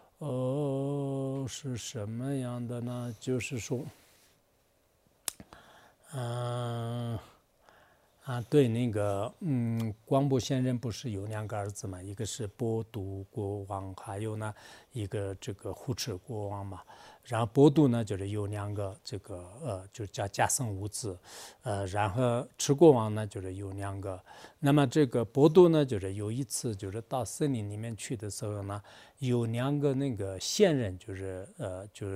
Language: English